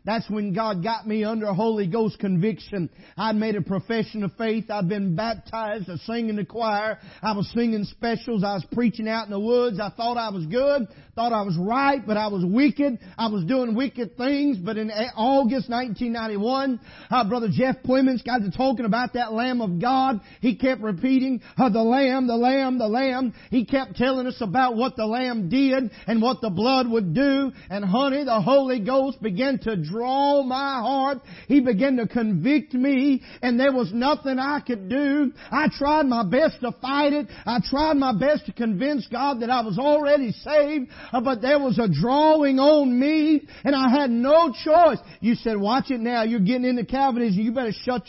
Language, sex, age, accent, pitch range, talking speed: English, male, 50-69, American, 220-265 Hz, 195 wpm